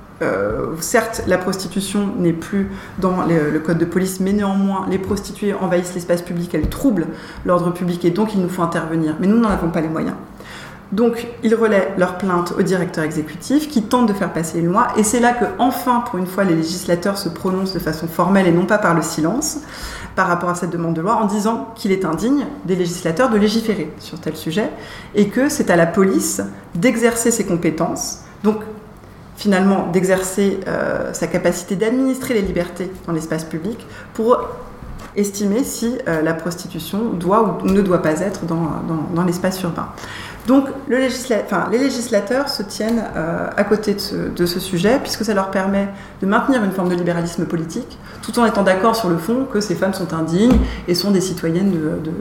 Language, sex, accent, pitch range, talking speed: English, female, French, 170-220 Hz, 195 wpm